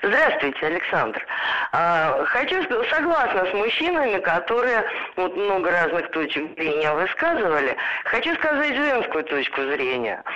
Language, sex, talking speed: Russian, female, 110 wpm